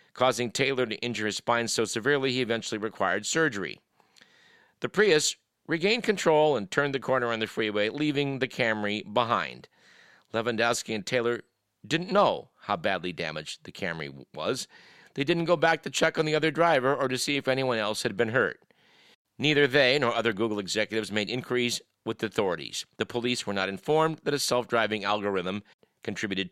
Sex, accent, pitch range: male, American, 110-165 Hz